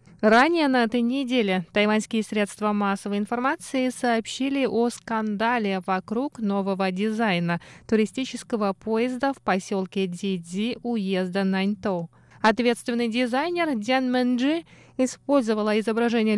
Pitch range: 200-255 Hz